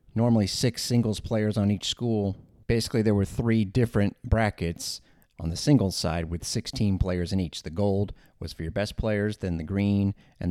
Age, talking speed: 30-49, 190 wpm